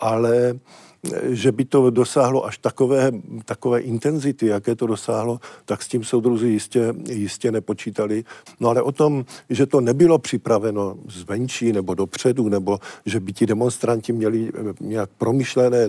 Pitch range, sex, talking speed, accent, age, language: 115-135 Hz, male, 145 wpm, native, 50-69, Czech